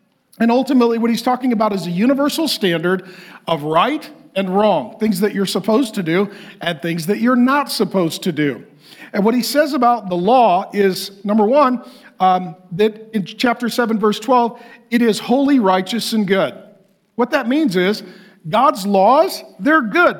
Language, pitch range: English, 195-255 Hz